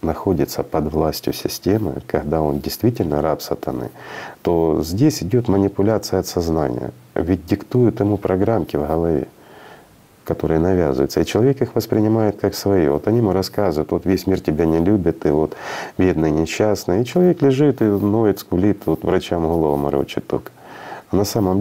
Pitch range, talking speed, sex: 75-105 Hz, 160 wpm, male